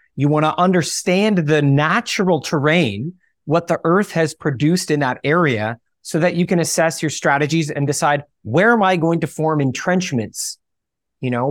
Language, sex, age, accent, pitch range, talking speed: English, male, 30-49, American, 135-170 Hz, 170 wpm